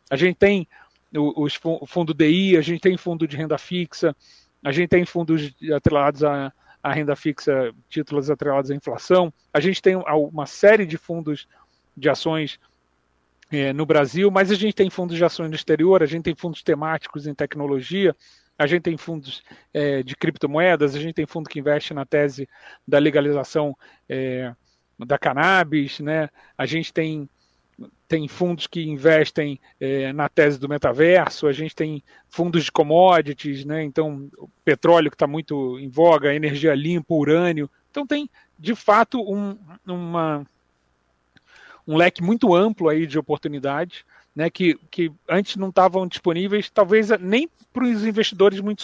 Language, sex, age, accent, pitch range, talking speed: Portuguese, male, 40-59, Brazilian, 145-180 Hz, 160 wpm